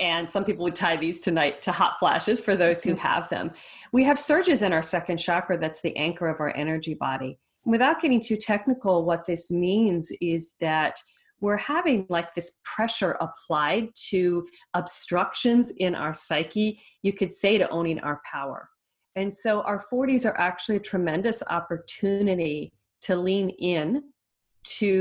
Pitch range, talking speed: 160-195 Hz, 165 wpm